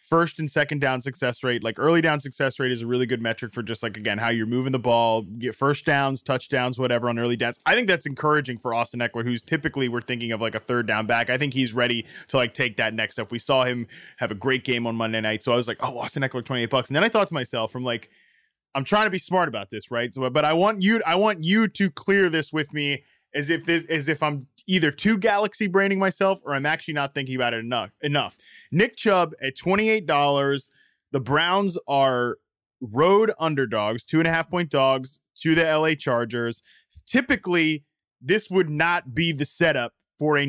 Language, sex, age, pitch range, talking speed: English, male, 20-39, 125-165 Hz, 230 wpm